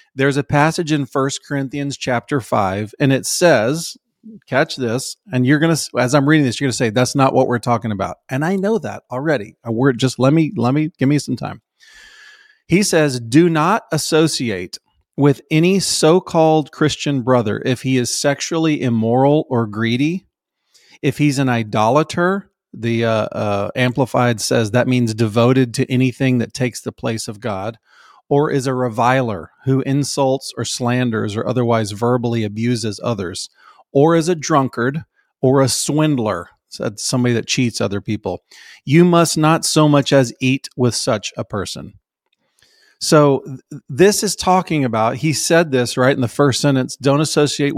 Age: 40-59